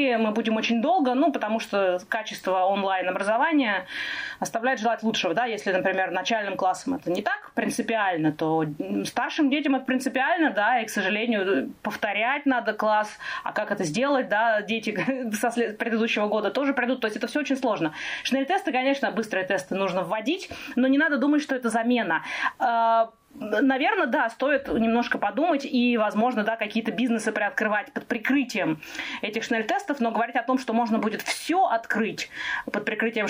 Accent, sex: native, female